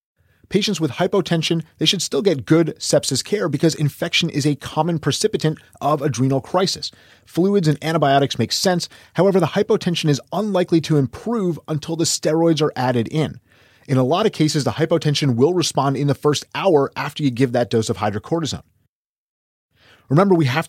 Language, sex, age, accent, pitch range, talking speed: English, male, 30-49, American, 125-165 Hz, 175 wpm